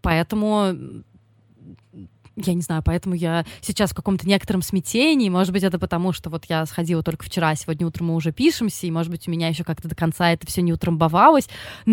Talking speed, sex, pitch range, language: 195 wpm, female, 165-220 Hz, Russian